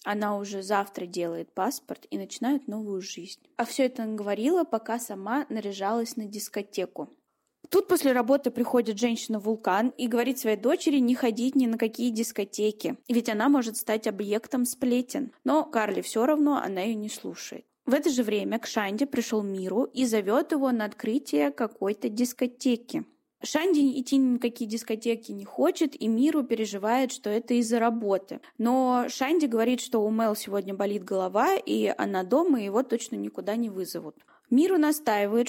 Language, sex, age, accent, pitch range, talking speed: Russian, female, 20-39, native, 215-270 Hz, 160 wpm